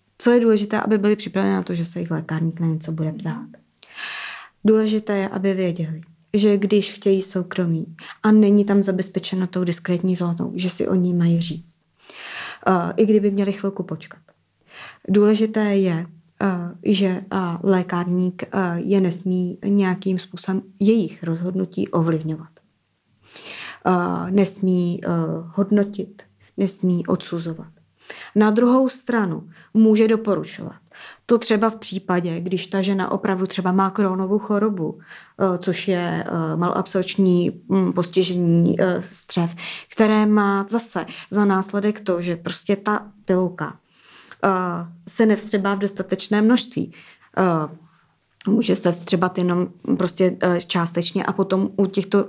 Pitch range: 175-200 Hz